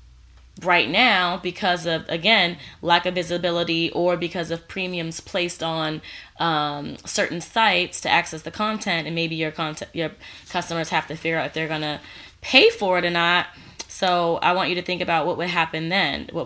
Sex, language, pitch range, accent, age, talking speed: female, English, 165-195 Hz, American, 20-39, 185 wpm